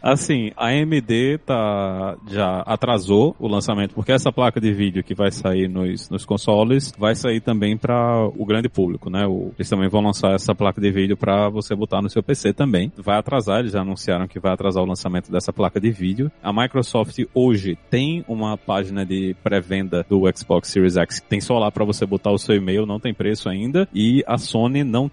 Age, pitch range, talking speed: 20-39, 100-125 Hz, 210 wpm